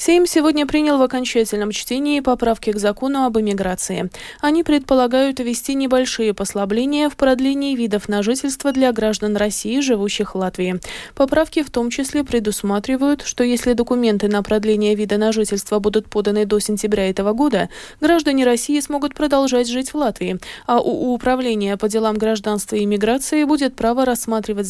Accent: native